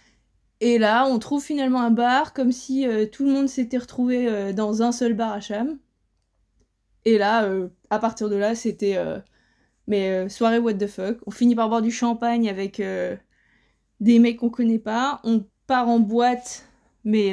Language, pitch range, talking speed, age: French, 215-255 Hz, 190 wpm, 20-39